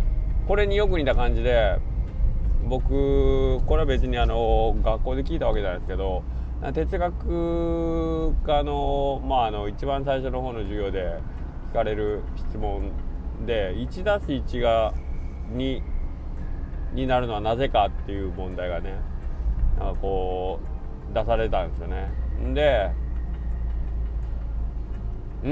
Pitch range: 95-140 Hz